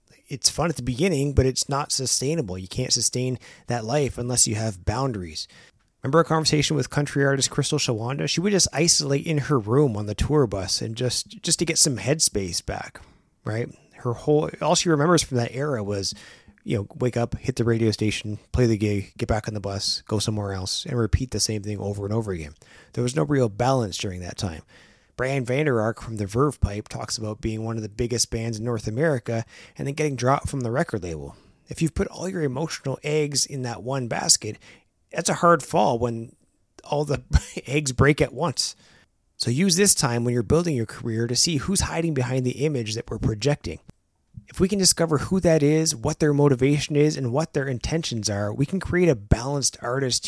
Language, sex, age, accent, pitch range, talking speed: English, male, 30-49, American, 110-150 Hz, 215 wpm